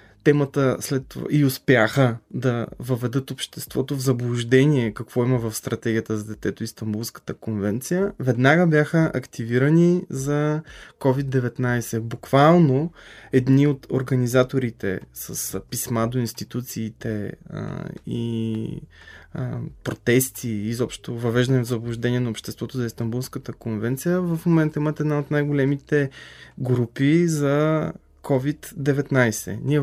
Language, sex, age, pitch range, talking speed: Bulgarian, male, 20-39, 120-145 Hz, 105 wpm